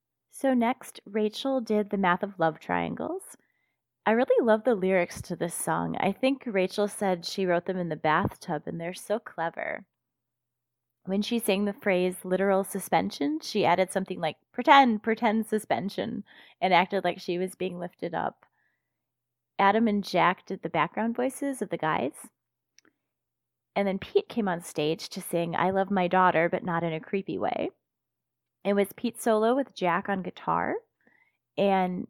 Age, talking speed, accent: 20-39, 170 wpm, American